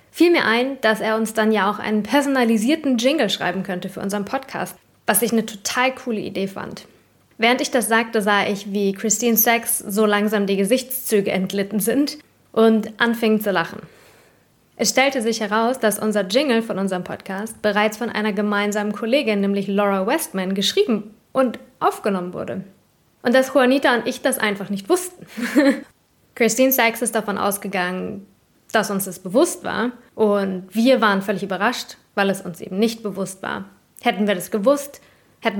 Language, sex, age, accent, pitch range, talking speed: English, female, 20-39, German, 200-235 Hz, 170 wpm